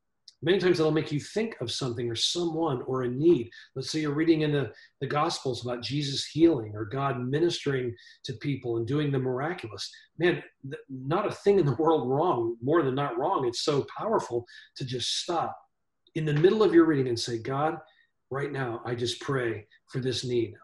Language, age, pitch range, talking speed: English, 40-59, 120-155 Hz, 200 wpm